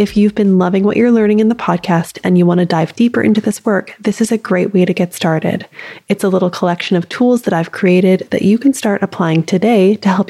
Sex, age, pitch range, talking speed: female, 20-39, 175-225 Hz, 255 wpm